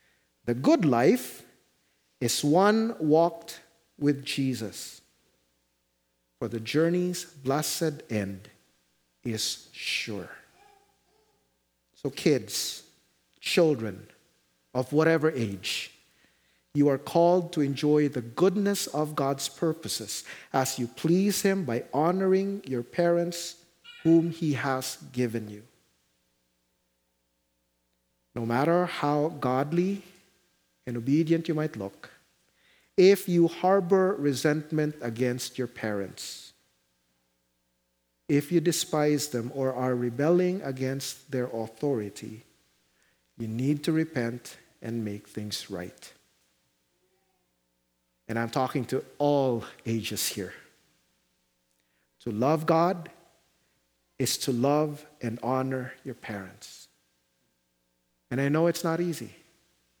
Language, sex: English, male